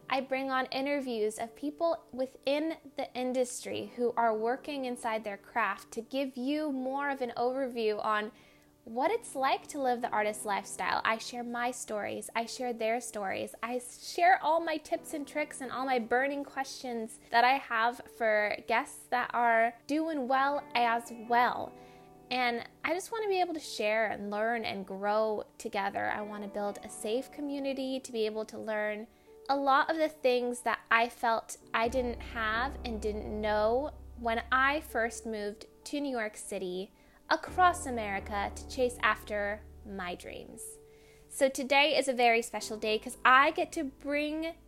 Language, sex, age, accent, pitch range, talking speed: English, female, 10-29, American, 225-275 Hz, 175 wpm